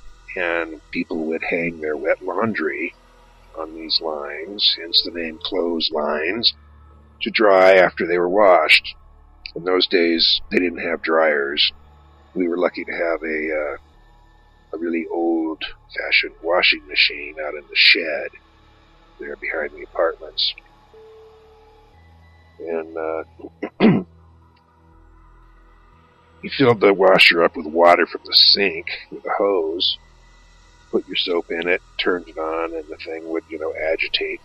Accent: American